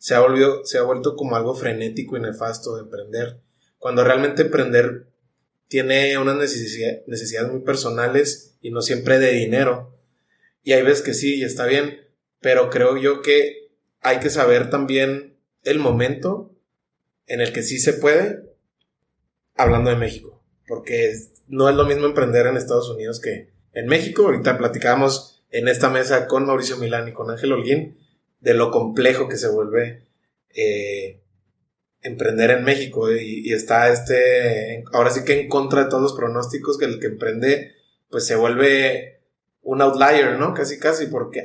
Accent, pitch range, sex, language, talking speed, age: Mexican, 120-145 Hz, male, Spanish, 165 wpm, 20-39